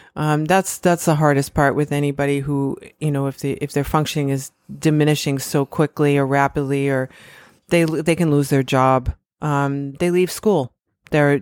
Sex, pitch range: female, 140-160 Hz